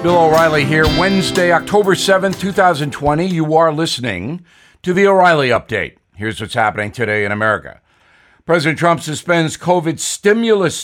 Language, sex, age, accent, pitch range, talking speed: English, male, 60-79, American, 135-180 Hz, 140 wpm